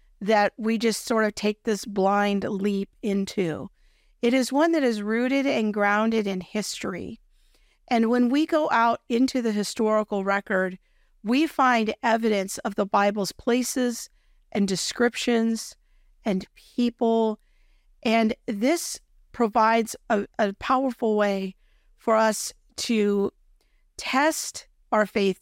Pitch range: 205-245 Hz